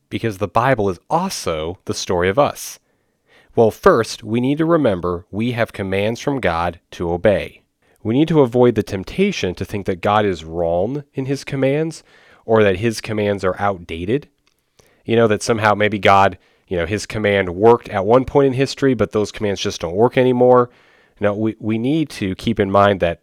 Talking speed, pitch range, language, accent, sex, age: 195 wpm, 95-125 Hz, English, American, male, 30-49